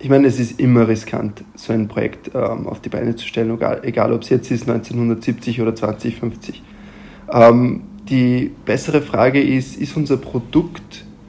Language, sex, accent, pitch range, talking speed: German, male, German, 120-130 Hz, 170 wpm